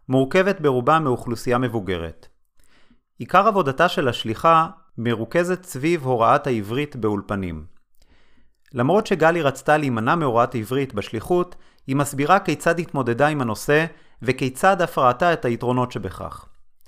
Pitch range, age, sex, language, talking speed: 120-165 Hz, 30-49, male, Hebrew, 115 wpm